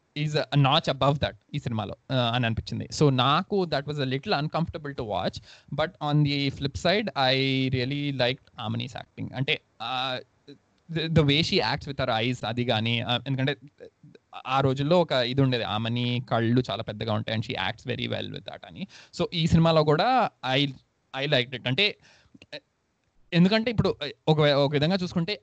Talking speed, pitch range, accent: 170 wpm, 120-155 Hz, native